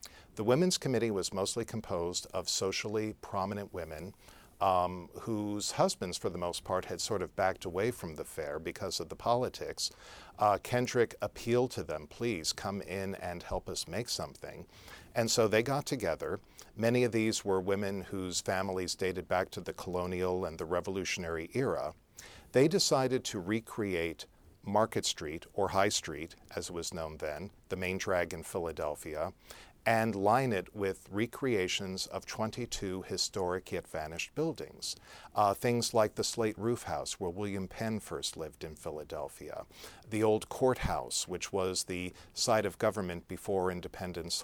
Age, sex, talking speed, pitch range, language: 50-69, male, 160 wpm, 90-115 Hz, English